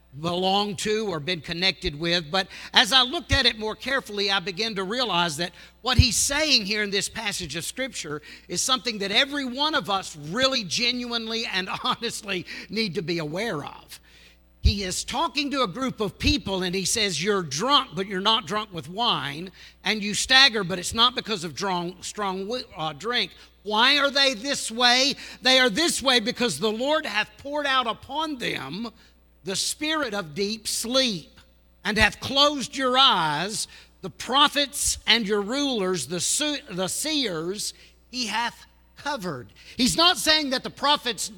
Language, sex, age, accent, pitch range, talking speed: English, male, 50-69, American, 195-270 Hz, 170 wpm